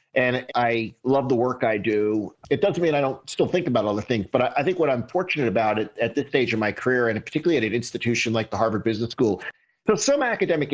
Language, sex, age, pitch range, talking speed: English, male, 50-69, 110-145 Hz, 240 wpm